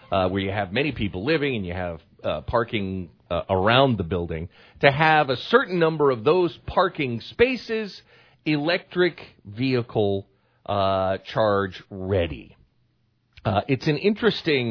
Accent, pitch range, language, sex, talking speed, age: American, 100-145 Hz, English, male, 140 wpm, 40-59